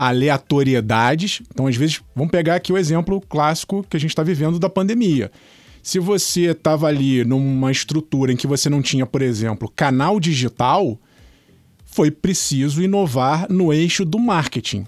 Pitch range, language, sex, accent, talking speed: 135-185 Hz, Portuguese, male, Brazilian, 155 wpm